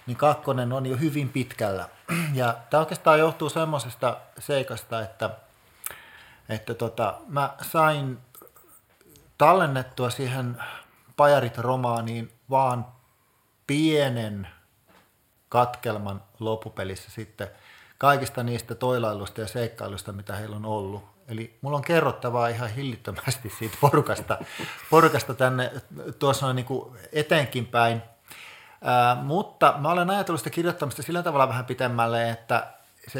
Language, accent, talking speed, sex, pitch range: Finnish, native, 110 wpm, male, 115-140 Hz